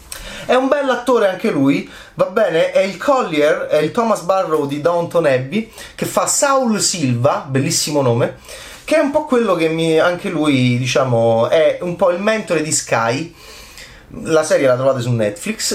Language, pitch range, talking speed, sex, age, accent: Italian, 125-175 Hz, 175 wpm, male, 30-49, native